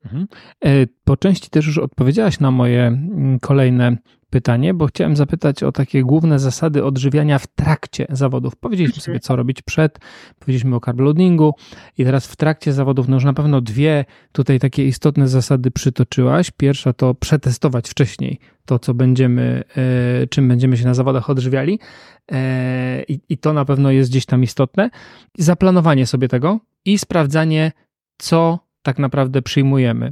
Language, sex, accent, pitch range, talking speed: Polish, male, native, 130-150 Hz, 145 wpm